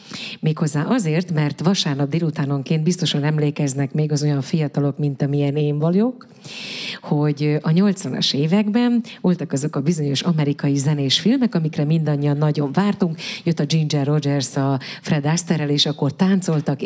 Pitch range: 150-195 Hz